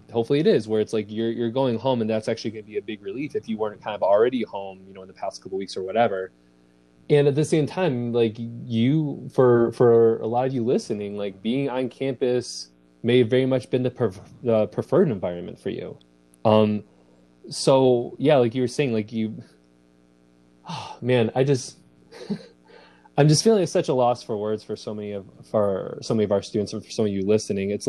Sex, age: male, 20-39